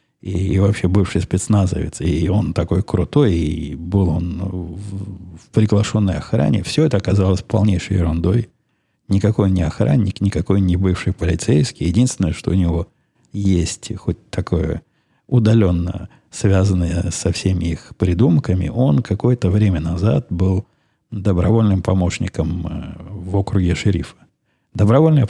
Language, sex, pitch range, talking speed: Russian, male, 85-105 Hz, 120 wpm